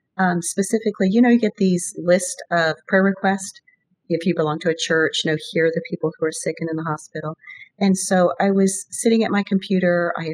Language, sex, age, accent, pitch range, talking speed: English, female, 40-59, American, 170-210 Hz, 225 wpm